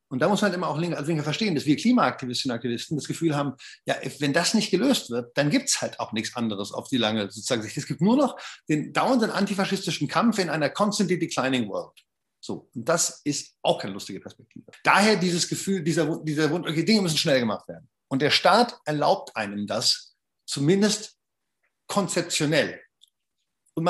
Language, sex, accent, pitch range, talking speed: German, male, German, 140-195 Hz, 190 wpm